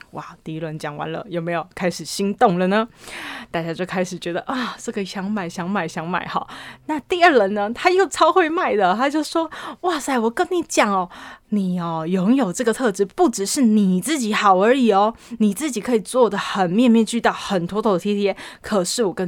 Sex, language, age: female, Chinese, 20-39